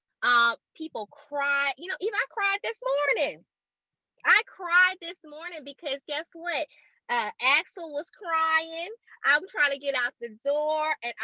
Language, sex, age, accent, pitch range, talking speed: English, female, 20-39, American, 230-305 Hz, 155 wpm